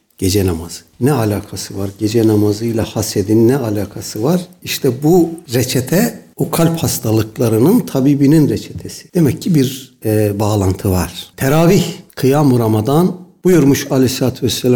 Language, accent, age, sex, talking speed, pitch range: Turkish, native, 60-79, male, 130 wpm, 110-160 Hz